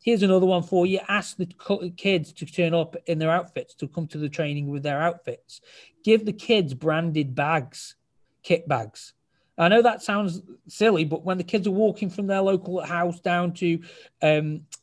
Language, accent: English, British